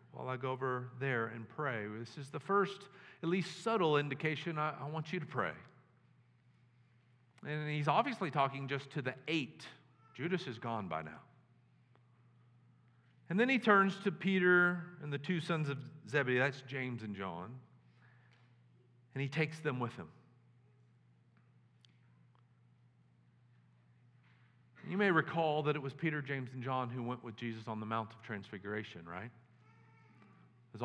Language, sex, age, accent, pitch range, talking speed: English, male, 50-69, American, 115-140 Hz, 150 wpm